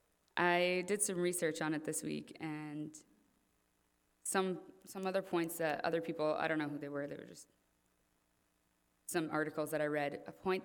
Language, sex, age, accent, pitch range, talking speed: English, female, 20-39, American, 145-165 Hz, 180 wpm